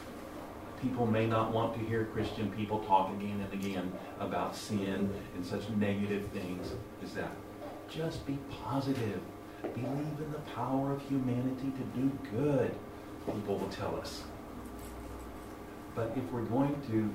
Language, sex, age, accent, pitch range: Japanese, male, 50-69, American, 105-125 Hz